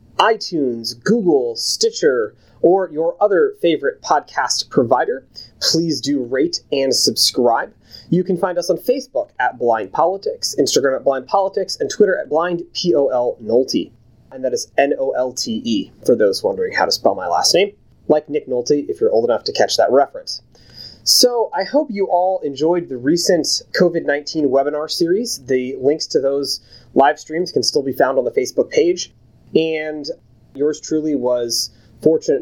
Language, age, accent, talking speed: English, 30-49, American, 160 wpm